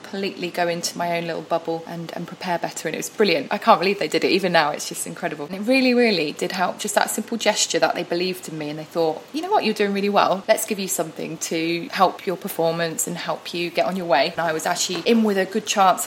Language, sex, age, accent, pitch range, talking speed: English, female, 20-39, British, 175-225 Hz, 280 wpm